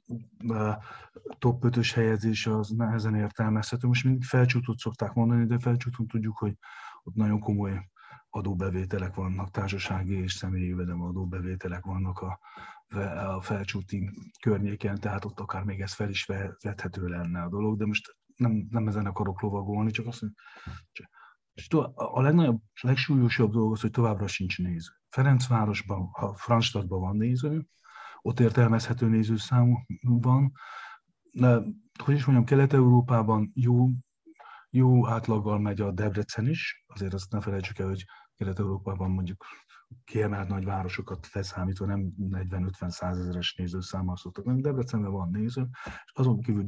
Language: Hungarian